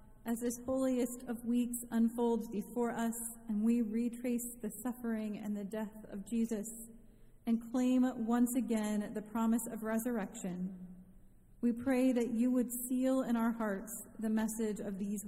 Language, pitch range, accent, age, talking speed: English, 200-235 Hz, American, 30-49, 155 wpm